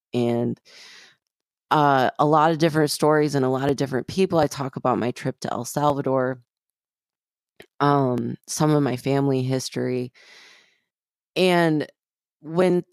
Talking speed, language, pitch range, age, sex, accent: 135 wpm, English, 130-160 Hz, 20-39, female, American